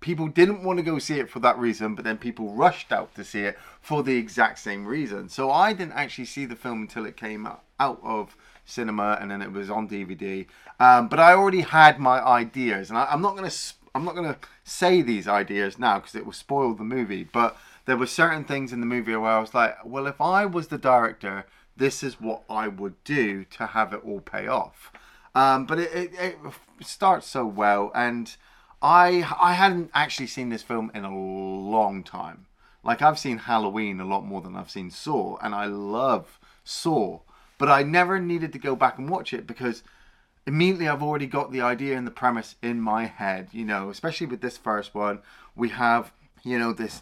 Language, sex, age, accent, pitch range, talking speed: English, male, 30-49, British, 110-140 Hz, 215 wpm